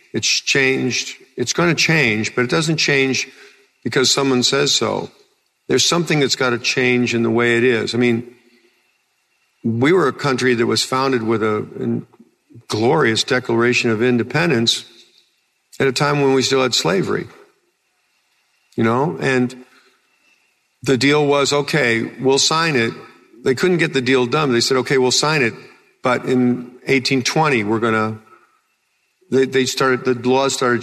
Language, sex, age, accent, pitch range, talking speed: English, male, 50-69, American, 115-135 Hz, 160 wpm